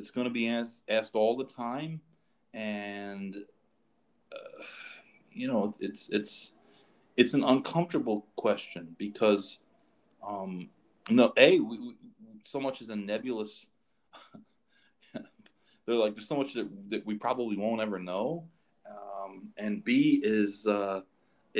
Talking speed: 135 wpm